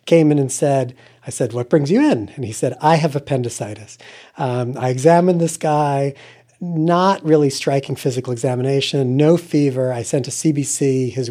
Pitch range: 125-155 Hz